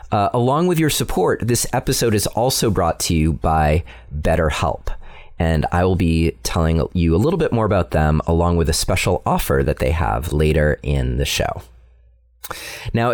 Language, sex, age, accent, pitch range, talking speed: English, male, 30-49, American, 80-115 Hz, 180 wpm